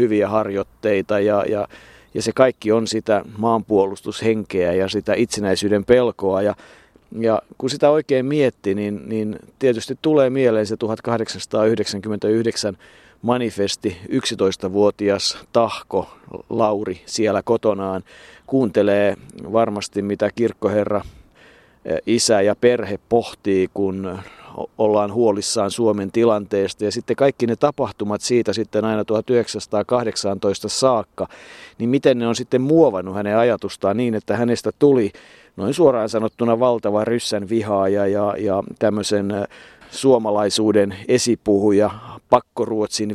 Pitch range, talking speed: 95-115 Hz, 110 wpm